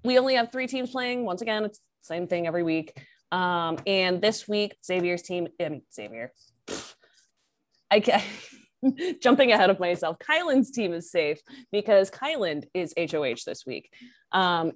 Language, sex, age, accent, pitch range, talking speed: English, female, 20-39, American, 170-245 Hz, 165 wpm